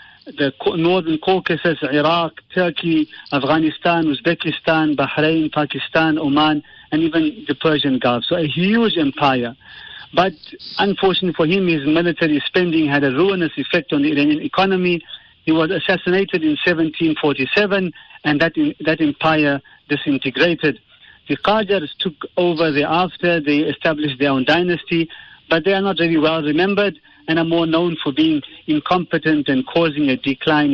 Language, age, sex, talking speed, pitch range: English, 50-69, male, 140 wpm, 150-185 Hz